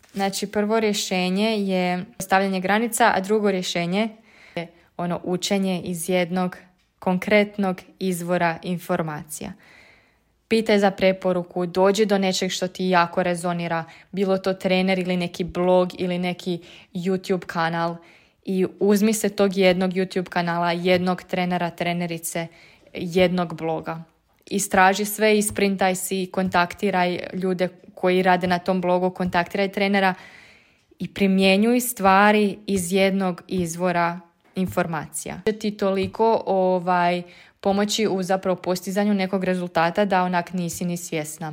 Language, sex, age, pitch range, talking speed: Croatian, female, 20-39, 180-200 Hz, 120 wpm